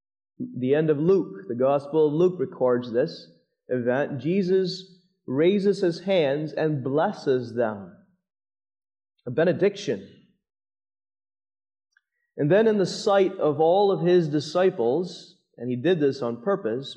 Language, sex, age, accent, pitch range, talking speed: English, male, 30-49, American, 140-190 Hz, 125 wpm